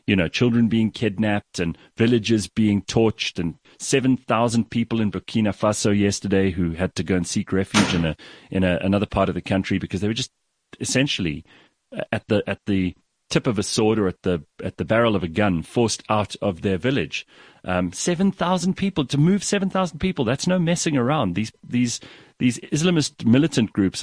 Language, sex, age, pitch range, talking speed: English, male, 40-59, 95-135 Hz, 200 wpm